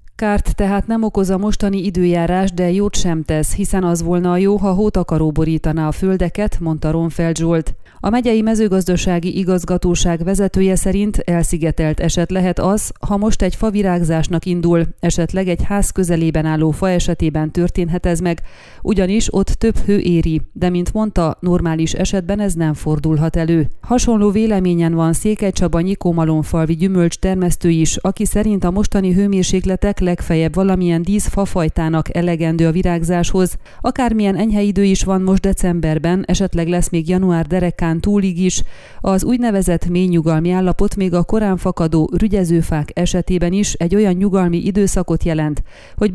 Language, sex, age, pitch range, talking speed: Hungarian, female, 30-49, 165-195 Hz, 150 wpm